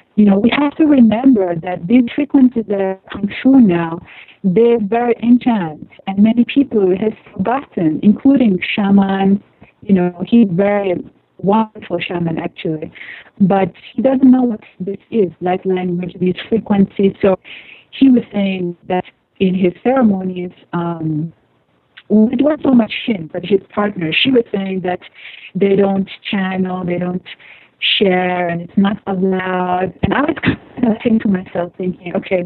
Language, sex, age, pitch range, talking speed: English, female, 40-59, 180-225 Hz, 155 wpm